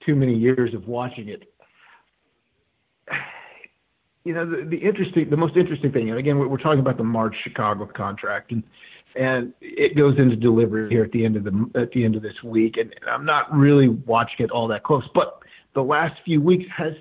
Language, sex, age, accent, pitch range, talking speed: English, male, 50-69, American, 120-150 Hz, 205 wpm